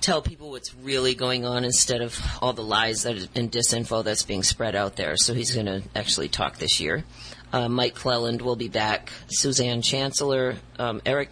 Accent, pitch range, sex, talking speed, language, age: American, 115-130 Hz, female, 190 wpm, English, 40-59